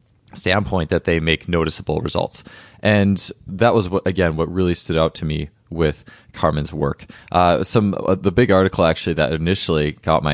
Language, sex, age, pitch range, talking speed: English, male, 20-39, 80-95 Hz, 180 wpm